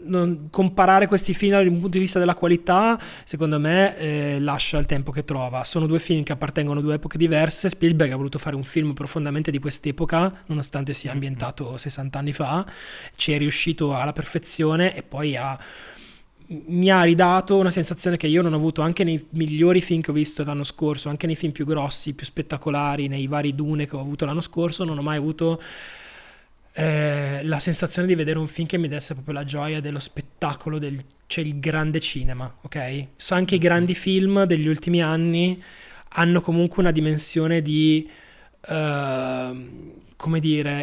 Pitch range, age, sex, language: 145-170 Hz, 20-39, male, Italian